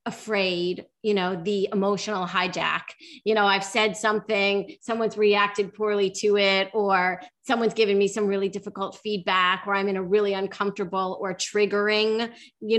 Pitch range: 195-220 Hz